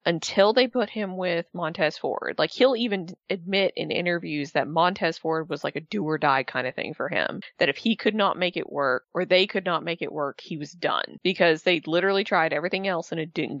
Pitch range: 160-195 Hz